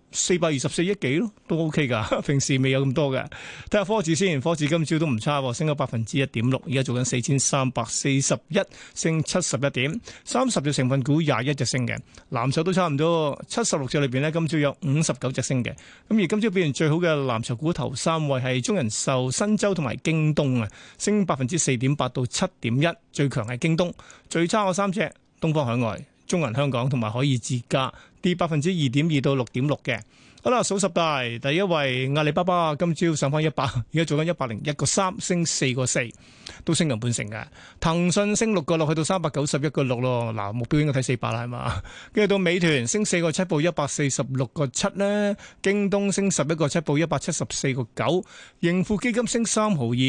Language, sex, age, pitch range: Chinese, male, 30-49, 130-170 Hz